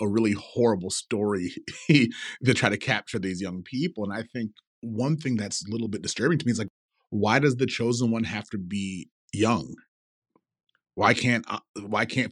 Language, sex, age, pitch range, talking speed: English, male, 30-49, 100-125 Hz, 190 wpm